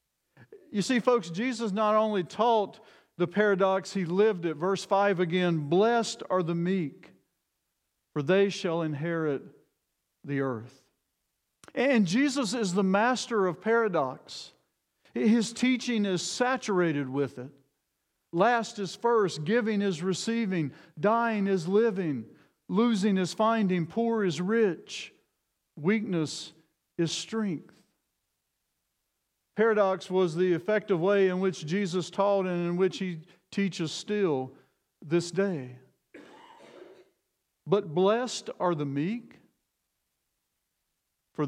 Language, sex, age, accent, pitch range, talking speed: English, male, 50-69, American, 165-210 Hz, 115 wpm